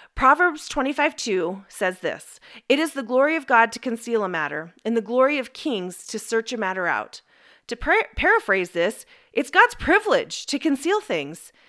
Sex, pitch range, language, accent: female, 225-315 Hz, English, American